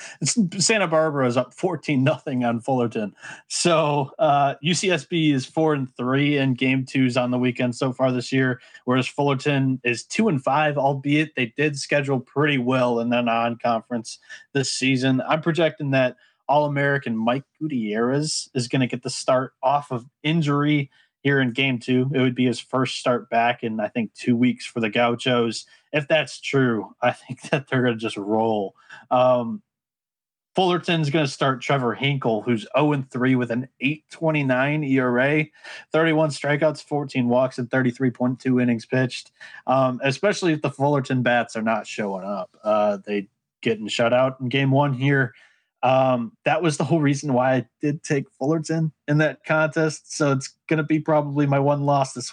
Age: 20-39